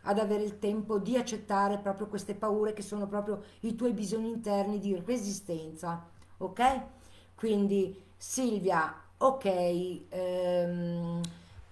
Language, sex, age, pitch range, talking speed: Italian, female, 50-69, 200-240 Hz, 120 wpm